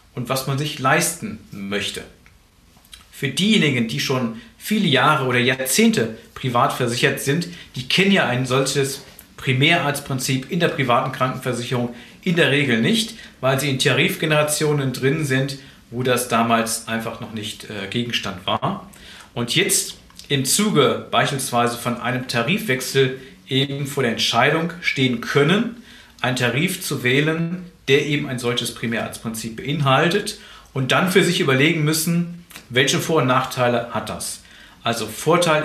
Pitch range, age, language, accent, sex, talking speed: 120-155 Hz, 50-69, German, German, male, 140 wpm